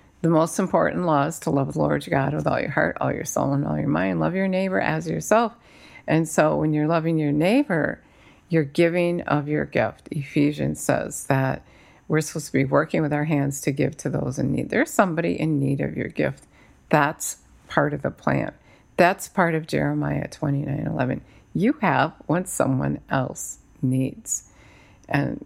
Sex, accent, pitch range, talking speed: female, American, 140-175 Hz, 190 wpm